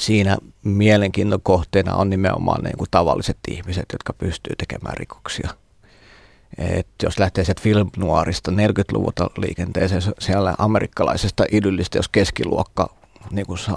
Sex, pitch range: male, 95-105 Hz